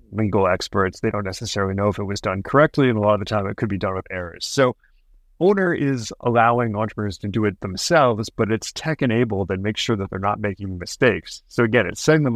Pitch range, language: 100-125 Hz, English